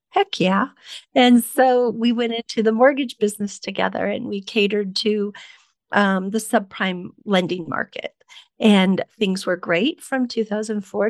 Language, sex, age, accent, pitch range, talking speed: English, female, 40-59, American, 195-250 Hz, 140 wpm